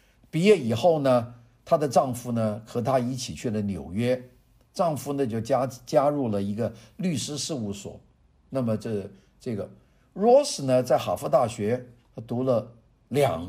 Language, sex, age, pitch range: Chinese, male, 50-69, 110-150 Hz